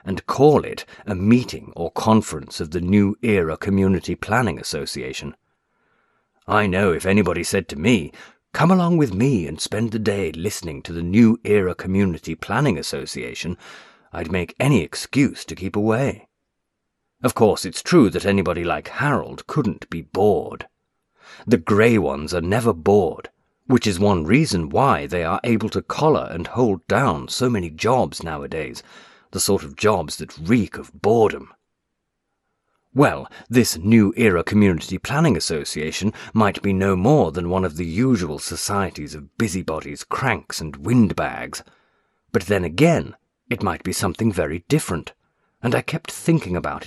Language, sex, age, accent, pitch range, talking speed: English, male, 40-59, British, 80-110 Hz, 155 wpm